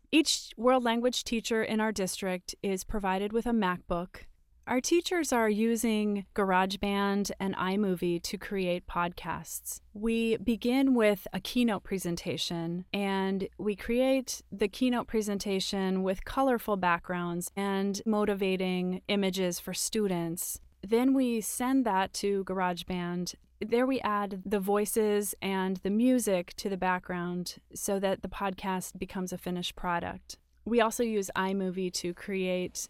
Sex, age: female, 30-49